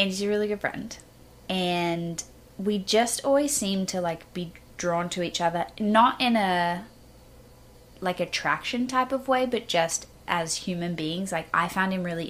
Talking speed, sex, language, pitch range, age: 175 wpm, female, English, 165-205 Hz, 20-39